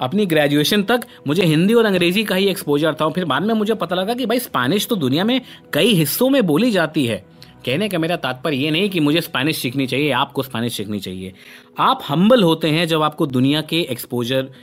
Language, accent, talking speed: Hindi, native, 215 wpm